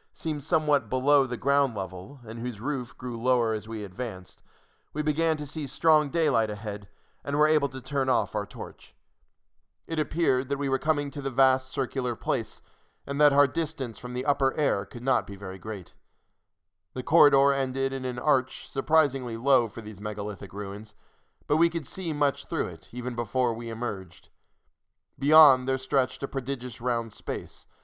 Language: English